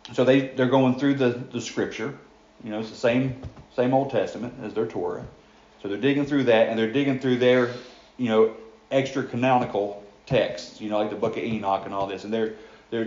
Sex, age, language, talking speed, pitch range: male, 40-59, English, 215 wpm, 110-130 Hz